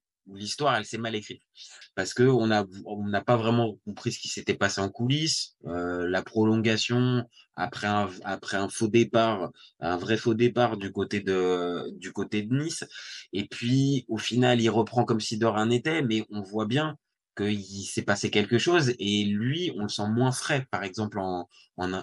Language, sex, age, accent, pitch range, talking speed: French, male, 20-39, French, 100-125 Hz, 190 wpm